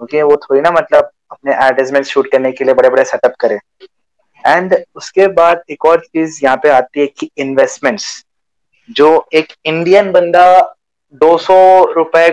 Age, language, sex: 20-39, Hindi, male